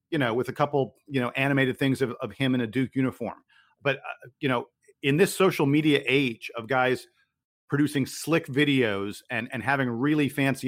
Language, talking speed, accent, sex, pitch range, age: English, 195 wpm, American, male, 130-155 Hz, 40-59